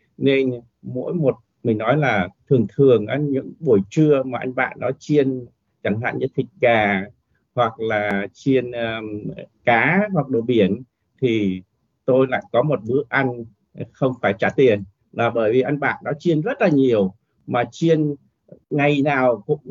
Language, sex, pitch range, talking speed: Vietnamese, male, 115-155 Hz, 170 wpm